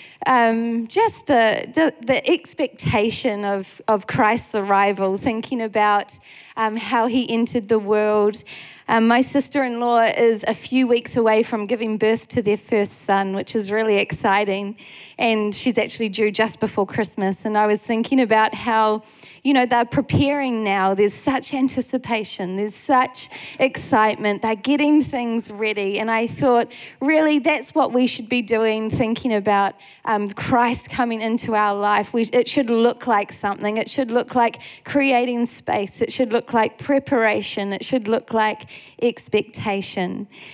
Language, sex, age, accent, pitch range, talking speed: English, female, 20-39, Australian, 210-255 Hz, 155 wpm